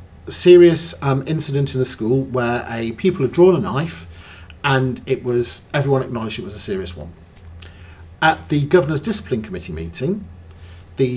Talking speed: 165 wpm